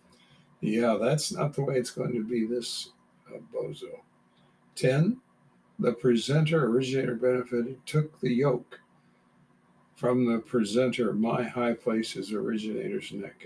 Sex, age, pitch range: male, 60-79, 115-140 Hz